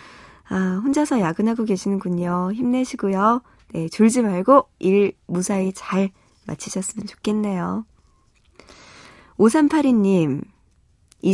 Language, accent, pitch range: Korean, native, 180-235 Hz